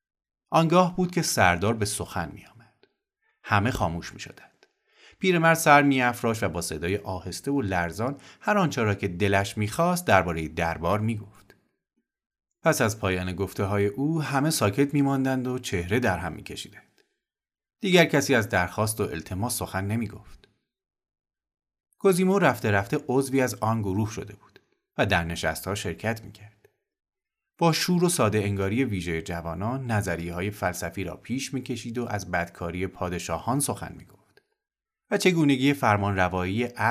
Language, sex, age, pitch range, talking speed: Persian, male, 30-49, 95-135 Hz, 145 wpm